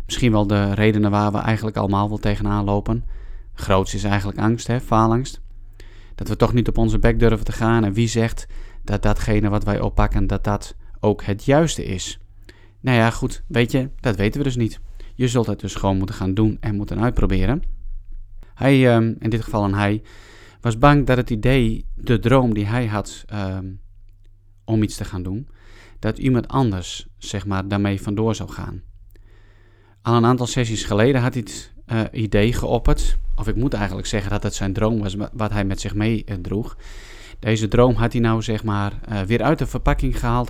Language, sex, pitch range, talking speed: Dutch, male, 100-120 Hz, 195 wpm